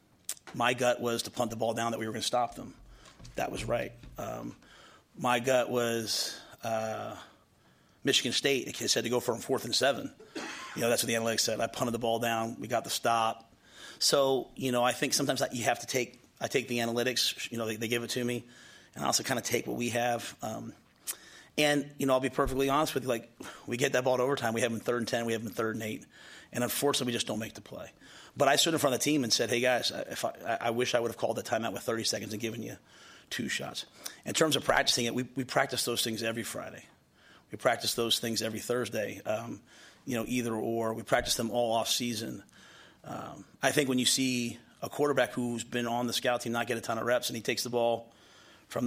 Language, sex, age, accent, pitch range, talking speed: English, male, 30-49, American, 115-125 Hz, 250 wpm